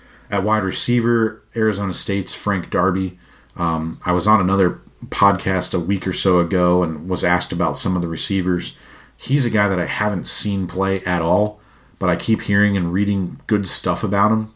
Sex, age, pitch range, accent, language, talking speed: male, 40-59, 90-100 Hz, American, English, 190 wpm